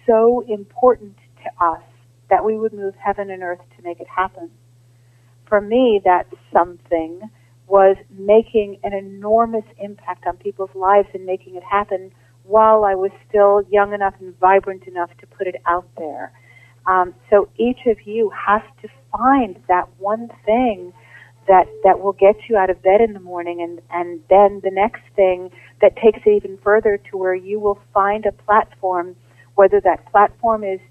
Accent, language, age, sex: American, English, 40-59, female